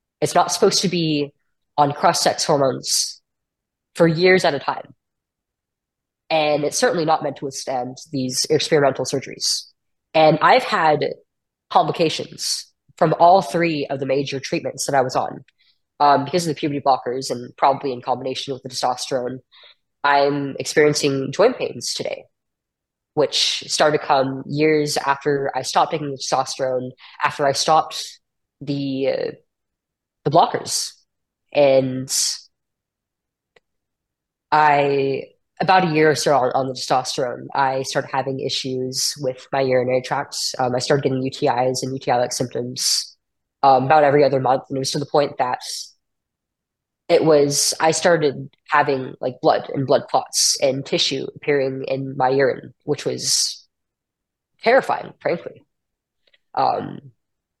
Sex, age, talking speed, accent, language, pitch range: female, 10-29, 140 wpm, American, English, 130-155 Hz